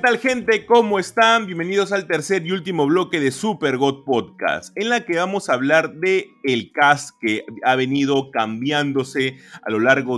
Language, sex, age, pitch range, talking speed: Spanish, male, 30-49, 130-180 Hz, 175 wpm